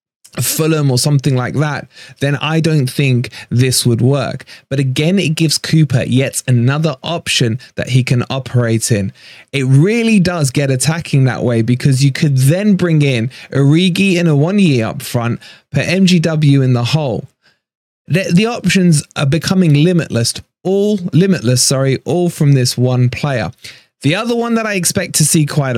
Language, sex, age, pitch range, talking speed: English, male, 20-39, 125-165 Hz, 170 wpm